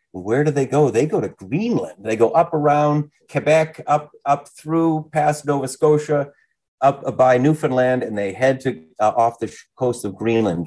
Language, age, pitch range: English, 40-59, 95-135 Hz